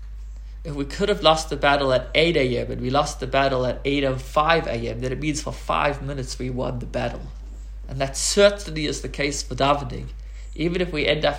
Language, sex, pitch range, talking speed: English, male, 95-145 Hz, 215 wpm